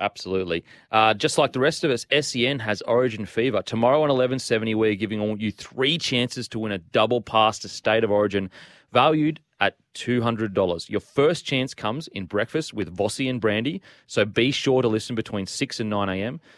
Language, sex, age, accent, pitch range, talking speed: English, male, 30-49, Australian, 105-130 Hz, 190 wpm